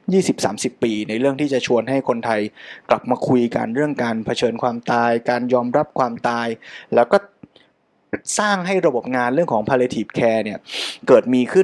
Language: Thai